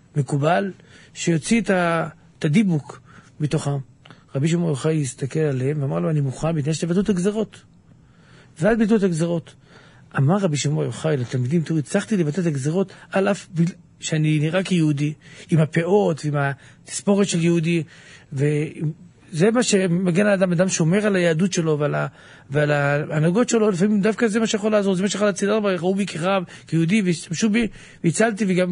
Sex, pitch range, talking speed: male, 145-190 Hz, 160 wpm